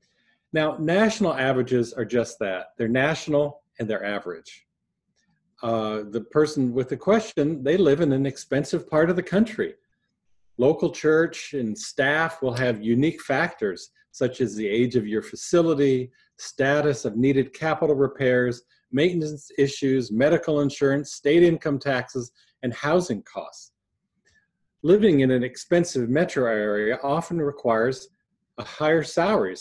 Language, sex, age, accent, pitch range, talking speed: English, male, 40-59, American, 120-160 Hz, 135 wpm